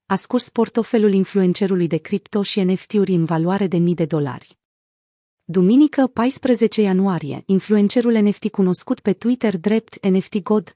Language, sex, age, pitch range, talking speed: Romanian, female, 30-49, 180-220 Hz, 140 wpm